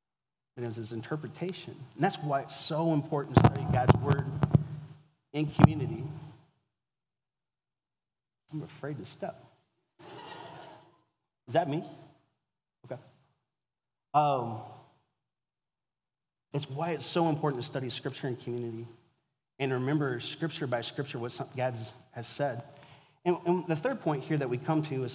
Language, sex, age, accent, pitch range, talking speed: English, male, 30-49, American, 125-155 Hz, 130 wpm